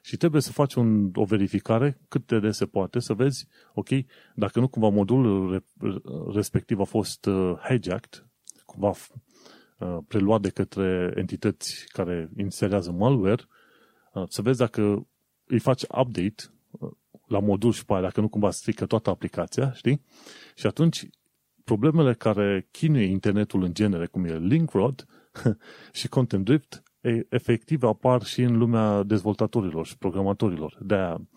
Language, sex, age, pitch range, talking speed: Romanian, male, 30-49, 95-115 Hz, 130 wpm